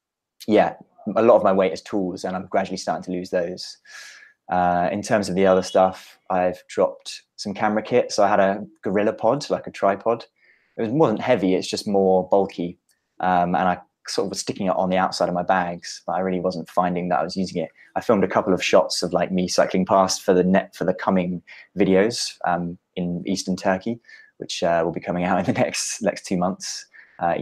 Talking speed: 225 wpm